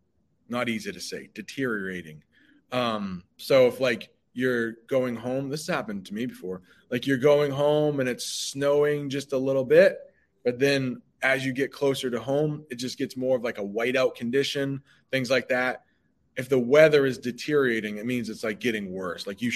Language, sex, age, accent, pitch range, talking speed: English, male, 30-49, American, 120-165 Hz, 185 wpm